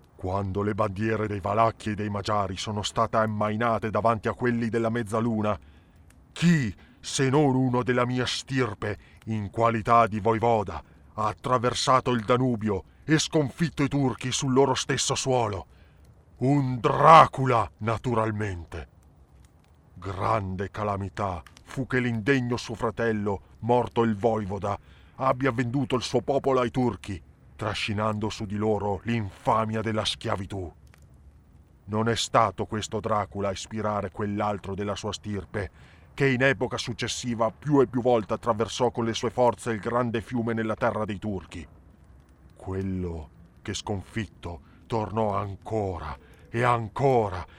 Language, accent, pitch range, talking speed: Italian, native, 100-125 Hz, 130 wpm